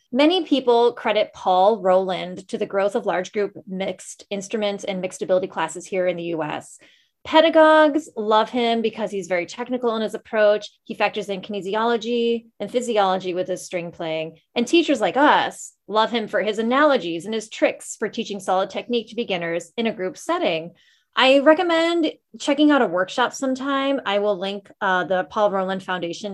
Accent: American